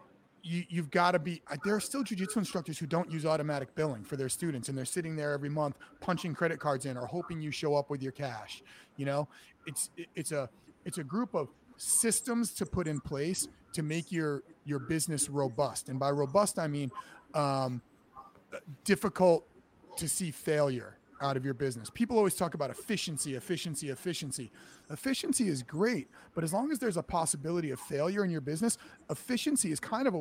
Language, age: English, 30-49